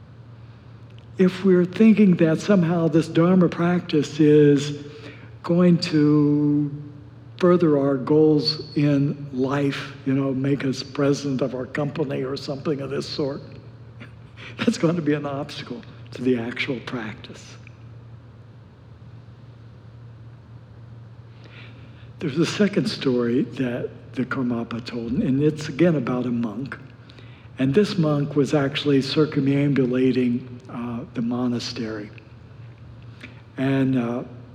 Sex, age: male, 60-79